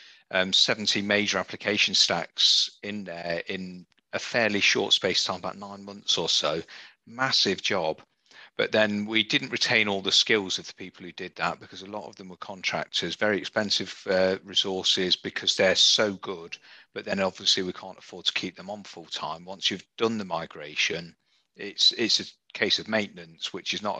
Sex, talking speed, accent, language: male, 190 wpm, British, English